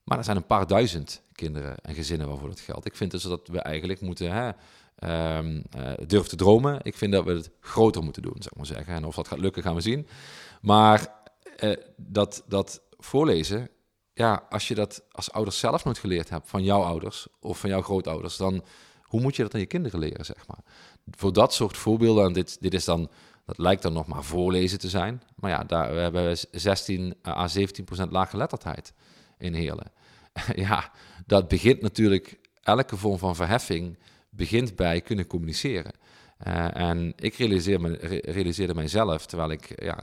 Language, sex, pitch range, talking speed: Dutch, male, 80-105 Hz, 195 wpm